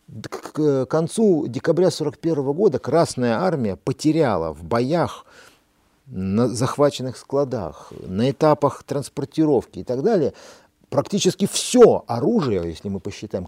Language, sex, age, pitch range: Russian, male, 50-69, 120-165 Hz